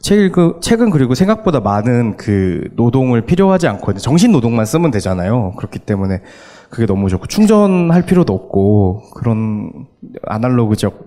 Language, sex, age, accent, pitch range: Korean, male, 20-39, native, 100-125 Hz